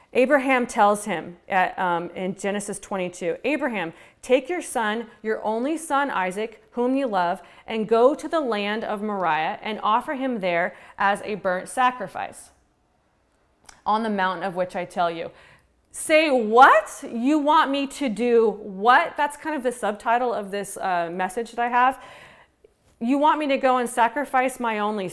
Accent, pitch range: American, 195-255 Hz